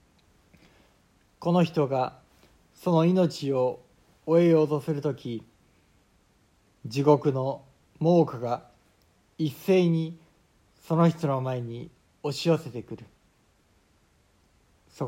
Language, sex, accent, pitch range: Japanese, male, native, 115-160 Hz